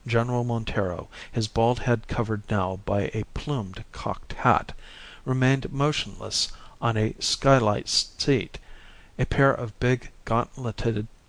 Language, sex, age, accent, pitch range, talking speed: English, male, 50-69, American, 105-125 Hz, 120 wpm